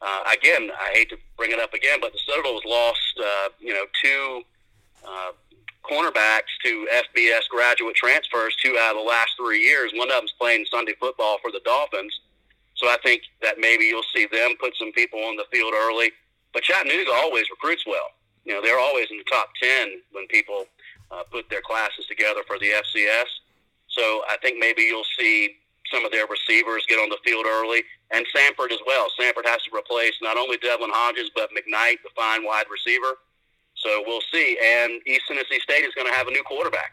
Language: English